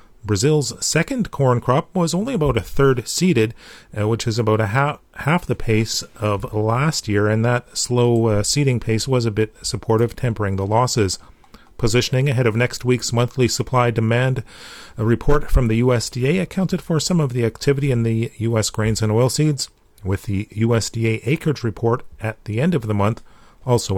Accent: American